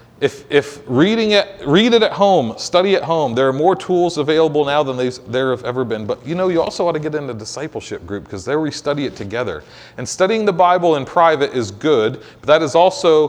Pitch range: 130-165 Hz